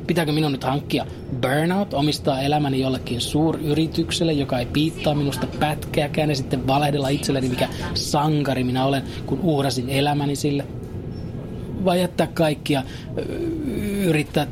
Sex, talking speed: male, 125 wpm